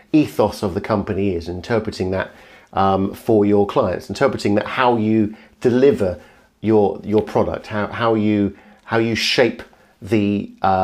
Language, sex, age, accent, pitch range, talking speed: English, male, 40-59, British, 105-125 Hz, 150 wpm